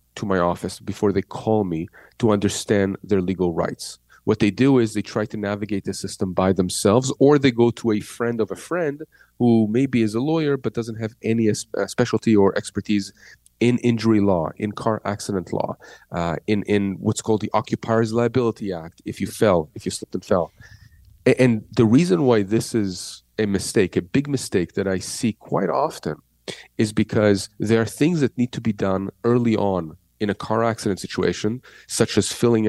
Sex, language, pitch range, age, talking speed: male, English, 100-120 Hz, 30-49, 195 wpm